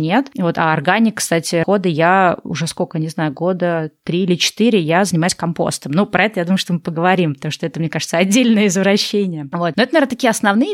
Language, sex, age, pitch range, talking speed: Russian, female, 20-39, 180-220 Hz, 220 wpm